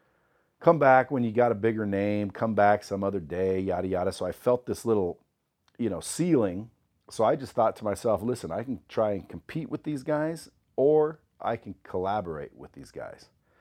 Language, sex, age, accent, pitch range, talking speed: English, male, 40-59, American, 85-115 Hz, 200 wpm